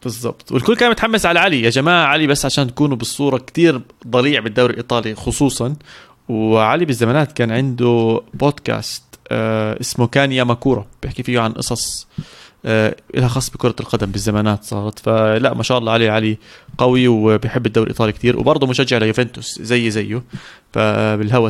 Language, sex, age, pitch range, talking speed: Arabic, male, 20-39, 115-150 Hz, 150 wpm